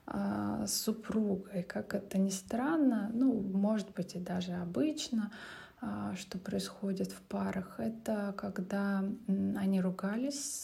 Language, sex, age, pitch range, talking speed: Russian, female, 20-39, 185-210 Hz, 115 wpm